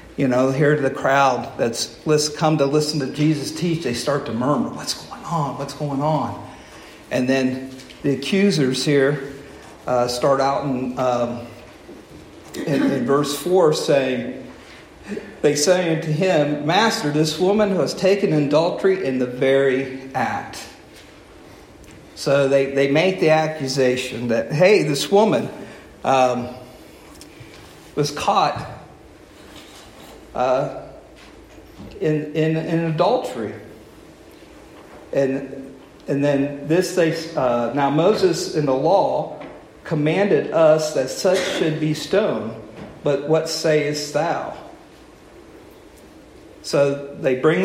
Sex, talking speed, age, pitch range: male, 120 wpm, 50-69, 130-160 Hz